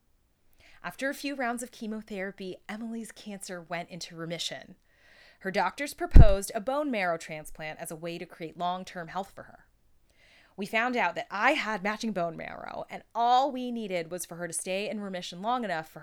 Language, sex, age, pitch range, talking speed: English, female, 20-39, 165-210 Hz, 185 wpm